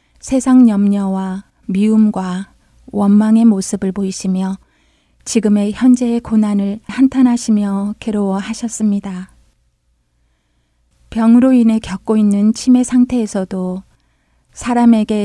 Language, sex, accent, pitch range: Korean, female, native, 180-225 Hz